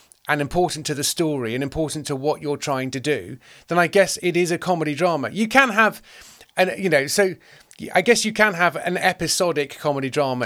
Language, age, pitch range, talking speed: English, 40-59, 135-175 Hz, 210 wpm